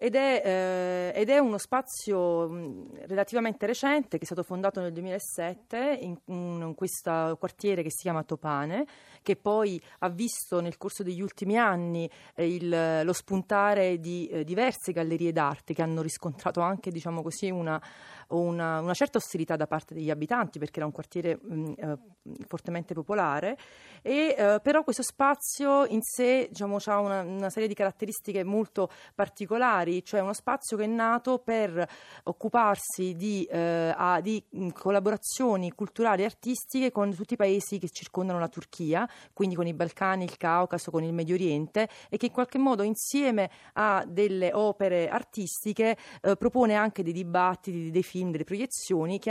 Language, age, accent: Italian, 30-49, native